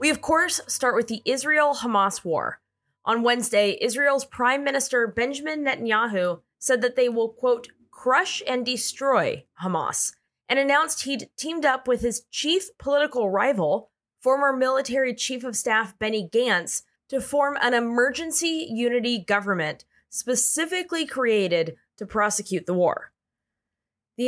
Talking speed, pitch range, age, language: 135 wpm, 205-270 Hz, 20-39, English